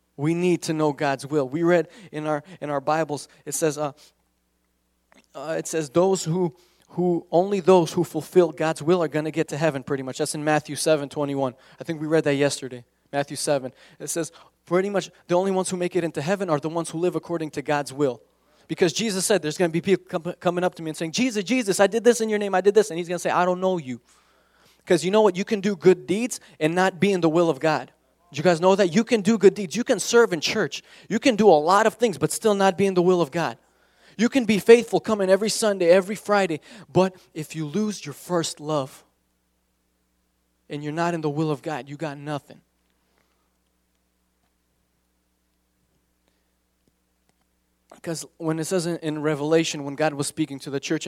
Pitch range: 140-185 Hz